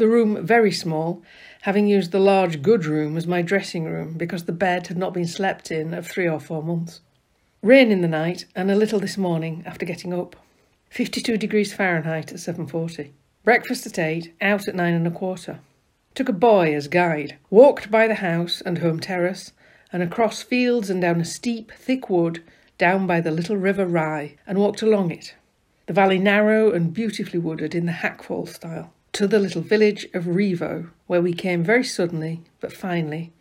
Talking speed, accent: 190 wpm, British